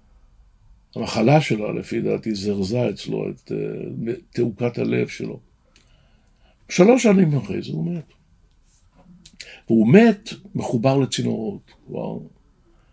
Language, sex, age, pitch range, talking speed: Hebrew, male, 60-79, 105-165 Hz, 100 wpm